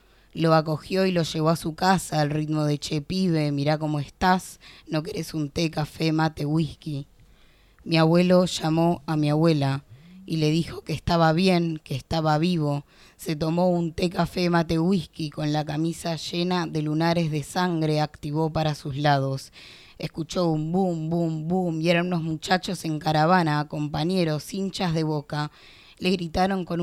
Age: 20-39